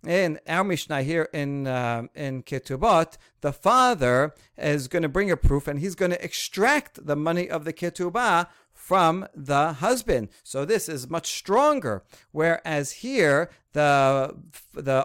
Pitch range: 135-180 Hz